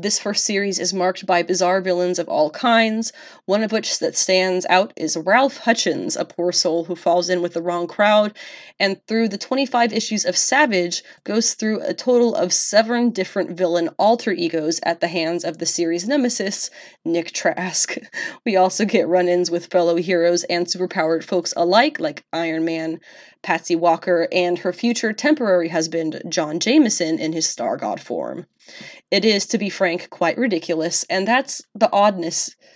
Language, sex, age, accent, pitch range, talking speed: English, female, 20-39, American, 175-225 Hz, 175 wpm